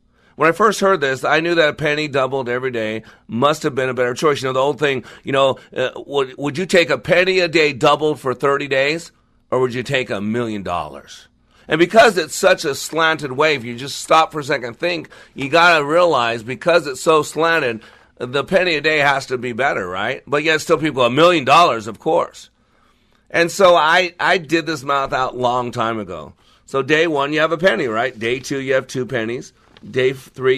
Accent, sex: American, male